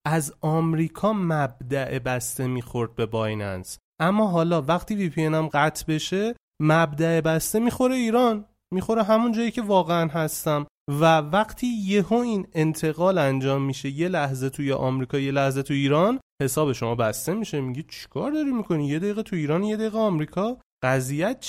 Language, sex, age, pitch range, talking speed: Persian, male, 30-49, 135-190 Hz, 155 wpm